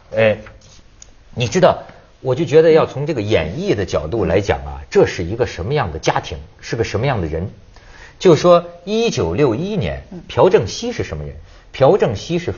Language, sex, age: Chinese, male, 50-69